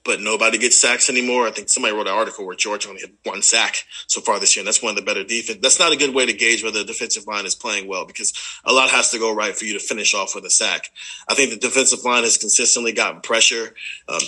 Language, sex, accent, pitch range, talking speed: English, male, American, 115-135 Hz, 280 wpm